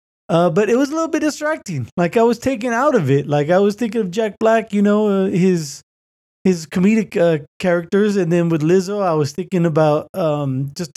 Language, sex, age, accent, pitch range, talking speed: English, male, 20-39, American, 150-200 Hz, 220 wpm